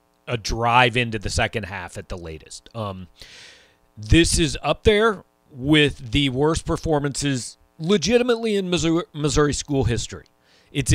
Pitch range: 110-135 Hz